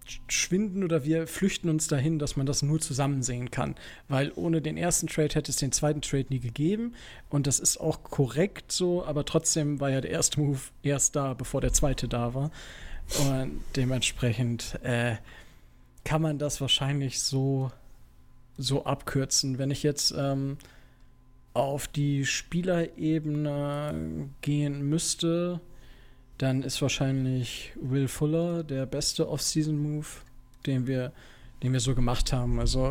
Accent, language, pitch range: German, German, 130-150 Hz